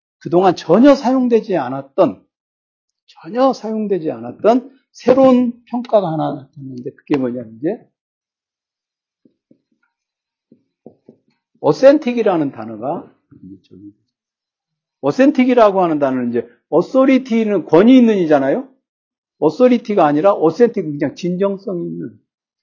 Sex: male